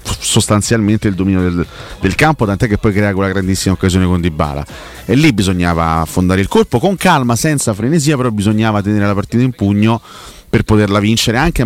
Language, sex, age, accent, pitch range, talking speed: Italian, male, 30-49, native, 90-115 Hz, 190 wpm